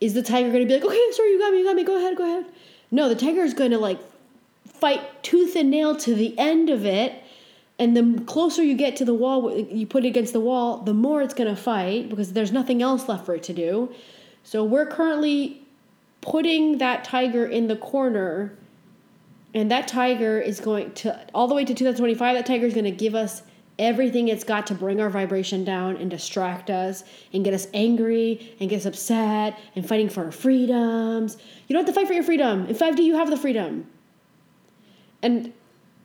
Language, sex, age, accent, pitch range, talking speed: English, female, 30-49, American, 215-270 Hz, 215 wpm